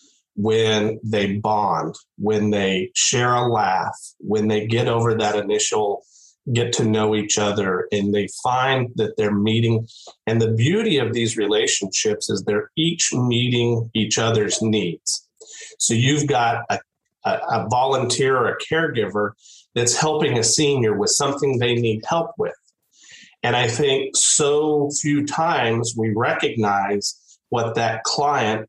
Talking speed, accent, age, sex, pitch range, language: 140 wpm, American, 40-59, male, 110-150 Hz, English